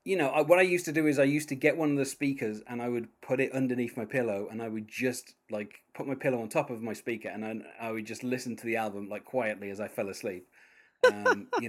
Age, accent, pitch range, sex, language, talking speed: 30-49, British, 115-155 Hz, male, English, 280 wpm